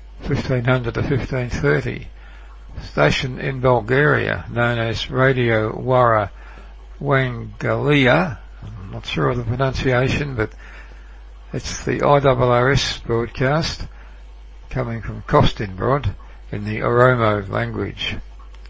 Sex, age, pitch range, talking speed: male, 60-79, 90-130 Hz, 95 wpm